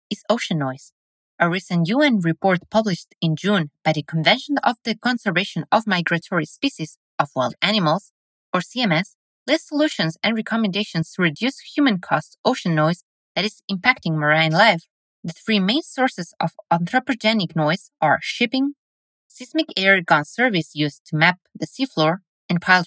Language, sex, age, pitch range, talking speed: English, female, 20-39, 165-230 Hz, 155 wpm